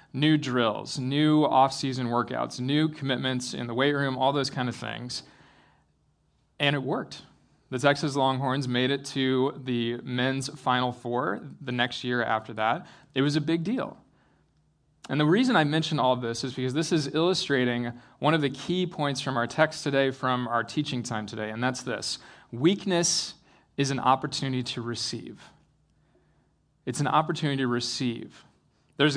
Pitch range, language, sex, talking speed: 125-150 Hz, English, male, 165 wpm